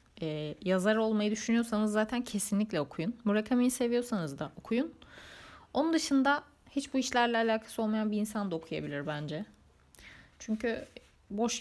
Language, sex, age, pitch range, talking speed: Turkish, female, 30-49, 165-210 Hz, 130 wpm